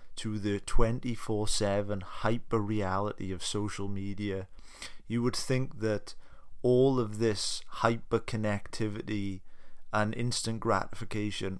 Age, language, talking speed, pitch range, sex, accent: 30-49, English, 95 wpm, 100-120 Hz, male, British